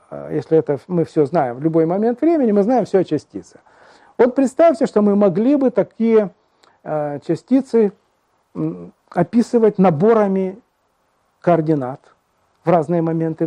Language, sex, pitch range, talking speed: Russian, male, 165-220 Hz, 120 wpm